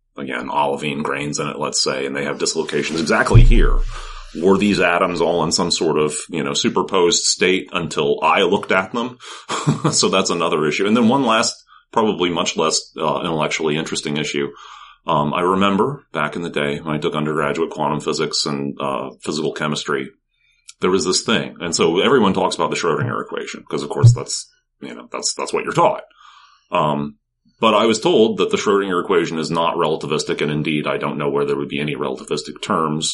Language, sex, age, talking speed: English, male, 30-49, 195 wpm